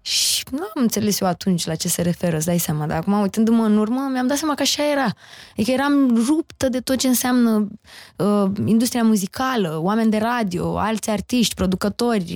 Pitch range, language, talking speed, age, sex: 195-255 Hz, Romanian, 195 wpm, 20-39, female